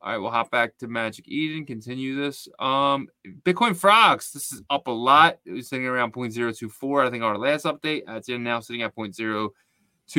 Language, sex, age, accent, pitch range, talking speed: English, male, 20-39, American, 125-180 Hz, 200 wpm